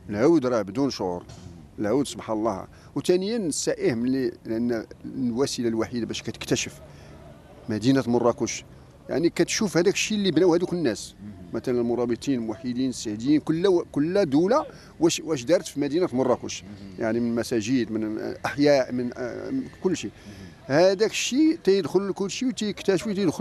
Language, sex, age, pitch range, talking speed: English, male, 40-59, 115-180 Hz, 140 wpm